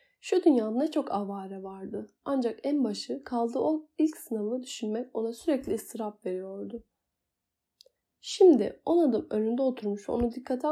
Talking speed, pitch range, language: 140 wpm, 215-295 Hz, Turkish